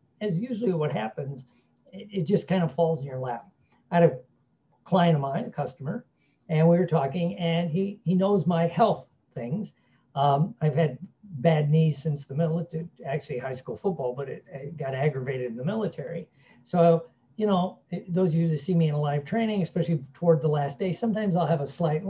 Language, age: English, 60-79